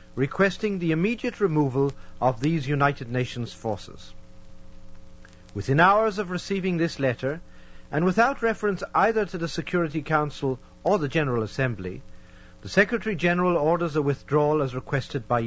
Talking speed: 135 wpm